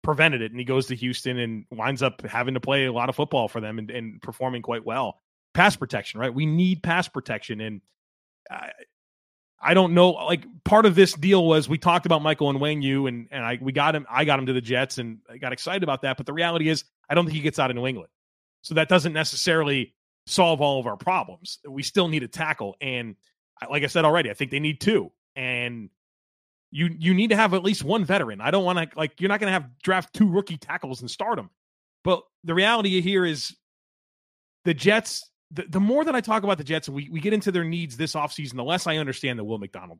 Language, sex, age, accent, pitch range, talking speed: English, male, 30-49, American, 130-180 Hz, 245 wpm